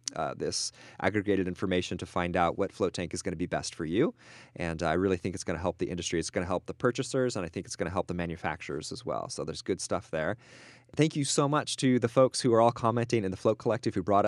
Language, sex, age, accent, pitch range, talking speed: English, male, 30-49, American, 90-125 Hz, 275 wpm